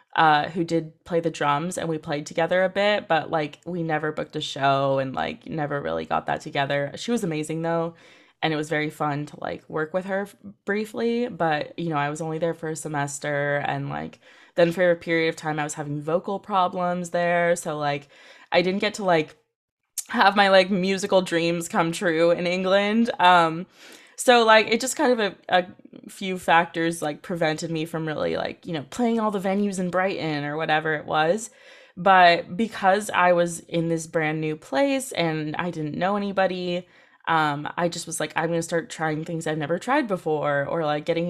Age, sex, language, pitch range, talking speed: 20-39, female, English, 155-185 Hz, 205 wpm